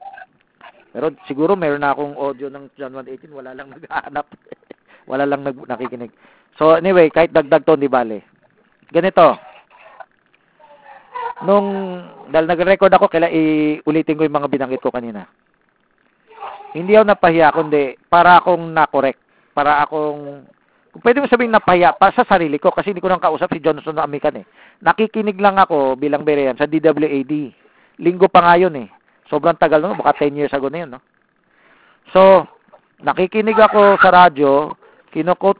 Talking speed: 150 wpm